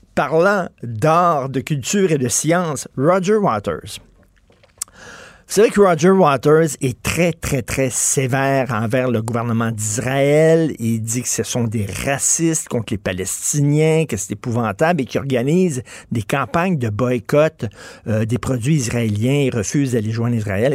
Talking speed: 150 wpm